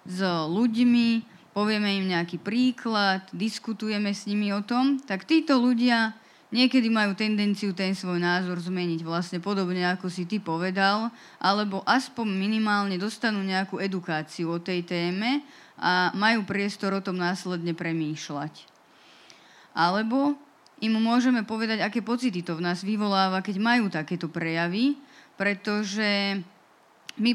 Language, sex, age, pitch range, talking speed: Slovak, female, 20-39, 185-220 Hz, 130 wpm